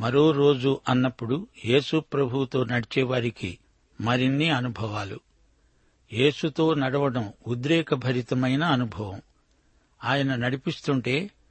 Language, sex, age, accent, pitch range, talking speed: Telugu, male, 60-79, native, 125-150 Hz, 75 wpm